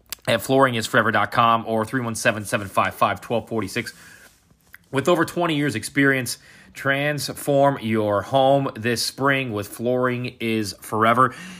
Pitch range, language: 105-135 Hz, English